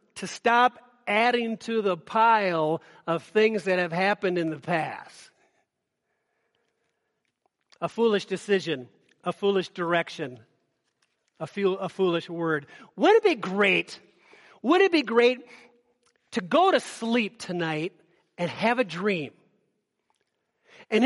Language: English